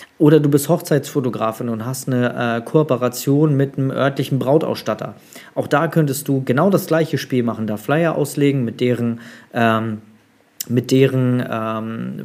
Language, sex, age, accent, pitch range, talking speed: German, male, 40-59, German, 120-150 Hz, 140 wpm